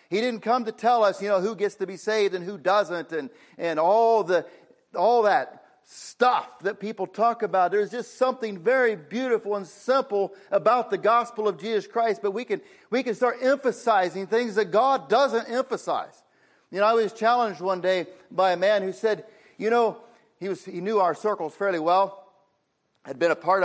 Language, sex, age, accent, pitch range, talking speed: English, male, 50-69, American, 190-240 Hz, 200 wpm